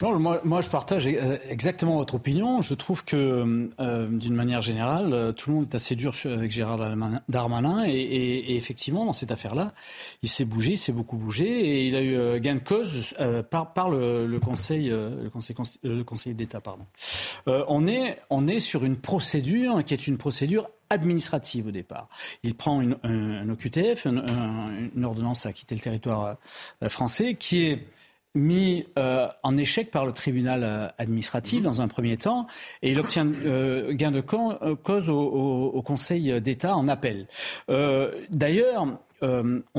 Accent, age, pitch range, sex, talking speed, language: French, 40-59, 120-155 Hz, male, 175 wpm, French